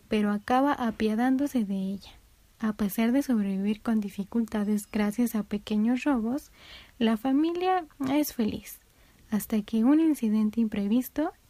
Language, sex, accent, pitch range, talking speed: Spanish, female, Mexican, 220-275 Hz, 125 wpm